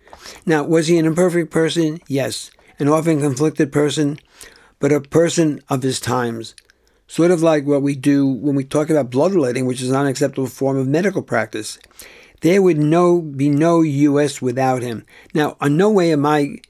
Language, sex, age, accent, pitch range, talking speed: English, male, 60-79, American, 130-160 Hz, 180 wpm